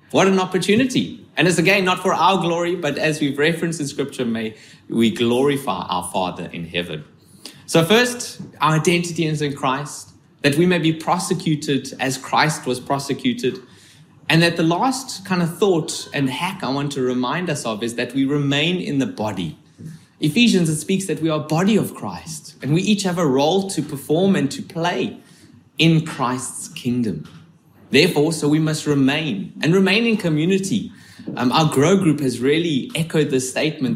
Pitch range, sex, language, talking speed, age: 130-175 Hz, male, English, 180 wpm, 30-49